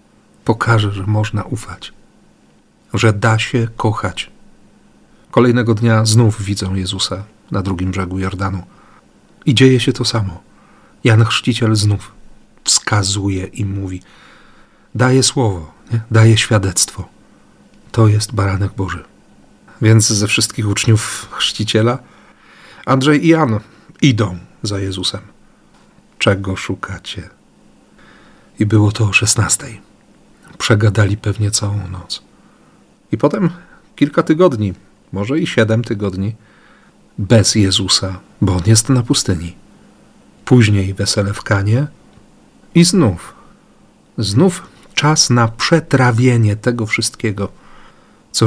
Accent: native